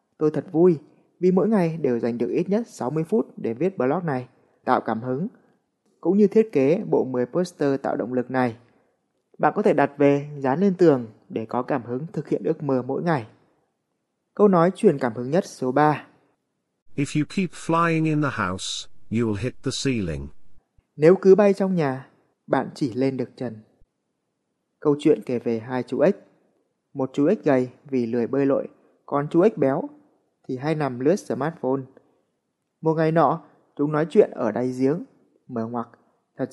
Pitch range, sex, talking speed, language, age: 125-180 Hz, male, 170 wpm, Vietnamese, 20-39